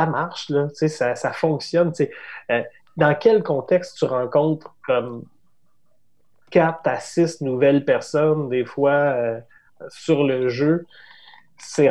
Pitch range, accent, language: 125-160 Hz, Canadian, French